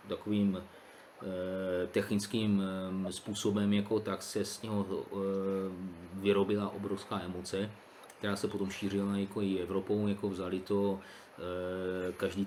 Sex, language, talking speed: male, Czech, 125 wpm